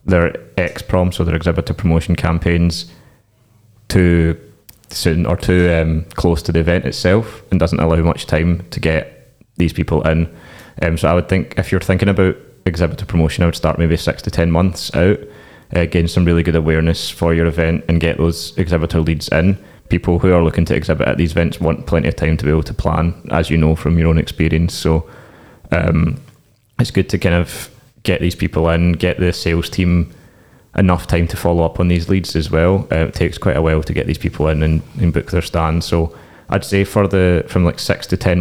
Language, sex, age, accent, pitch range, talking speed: English, male, 20-39, British, 85-95 Hz, 215 wpm